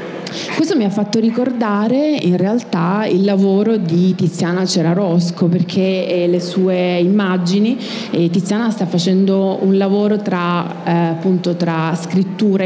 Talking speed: 130 wpm